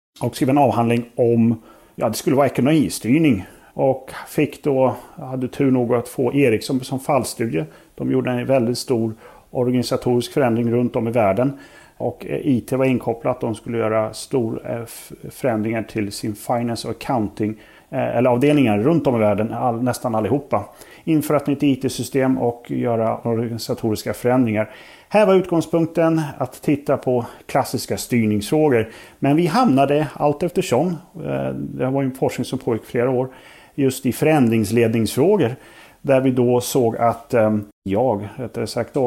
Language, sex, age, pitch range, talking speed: Swedish, male, 30-49, 115-140 Hz, 150 wpm